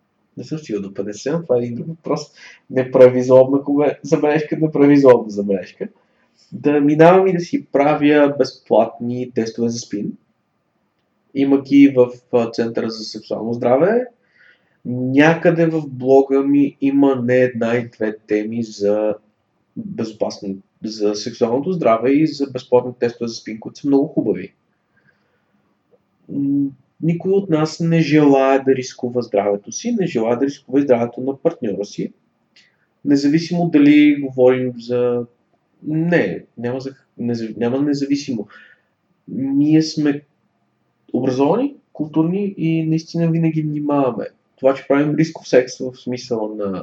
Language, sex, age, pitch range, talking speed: Bulgarian, male, 20-39, 120-150 Hz, 125 wpm